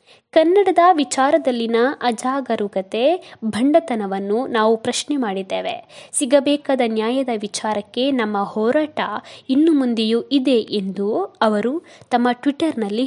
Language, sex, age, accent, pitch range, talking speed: Kannada, female, 20-39, native, 220-290 Hz, 85 wpm